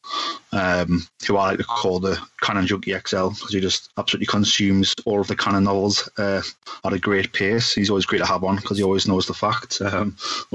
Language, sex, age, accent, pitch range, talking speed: English, male, 20-39, British, 95-110 Hz, 215 wpm